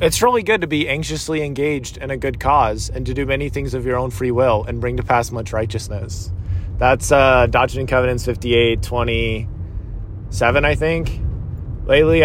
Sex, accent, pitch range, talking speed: male, American, 105-130 Hz, 175 wpm